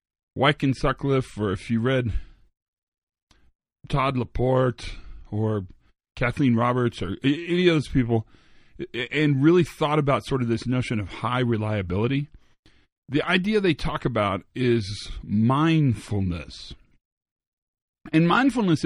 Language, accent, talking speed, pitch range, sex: English, American, 115 wpm, 105-140 Hz, male